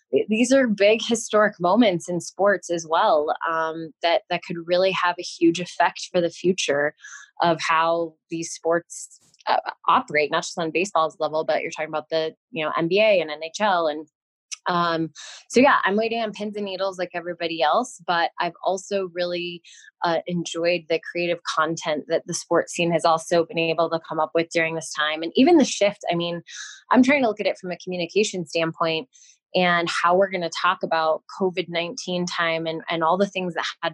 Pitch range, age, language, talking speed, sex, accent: 165-190 Hz, 20-39, English, 195 wpm, female, American